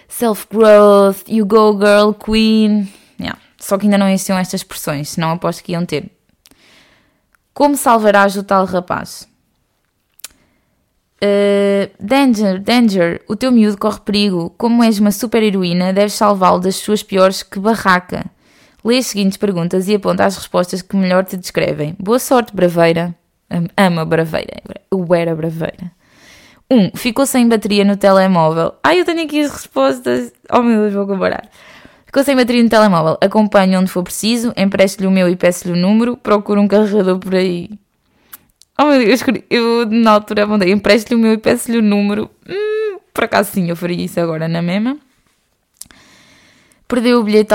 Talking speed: 165 wpm